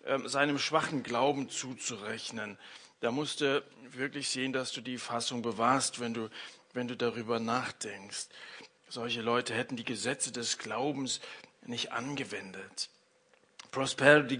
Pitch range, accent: 140-200 Hz, German